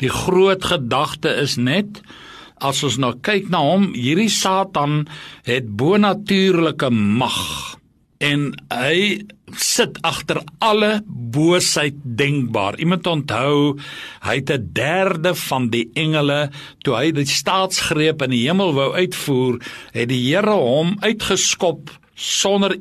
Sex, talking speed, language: male, 125 wpm, English